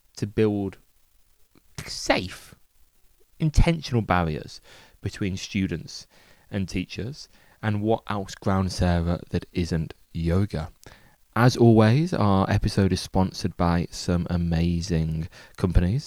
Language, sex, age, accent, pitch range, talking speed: English, male, 20-39, British, 90-115 Hz, 100 wpm